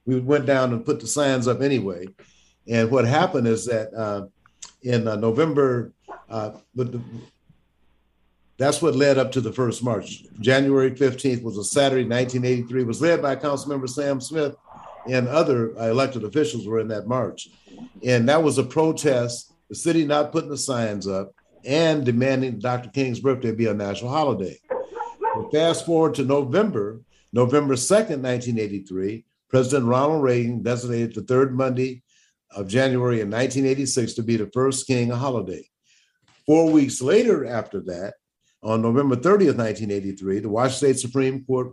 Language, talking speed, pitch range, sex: English, 160 wpm, 115-140 Hz, male